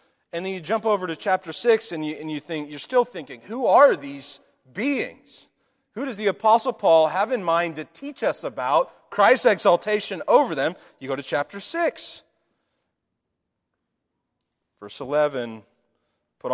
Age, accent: 40-59, American